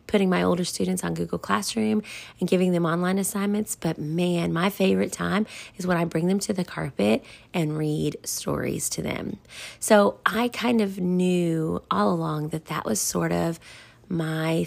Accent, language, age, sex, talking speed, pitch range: American, English, 30-49, female, 175 wpm, 155-205 Hz